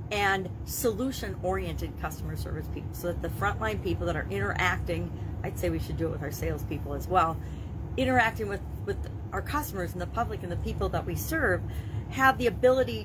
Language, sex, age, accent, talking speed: English, female, 40-59, American, 195 wpm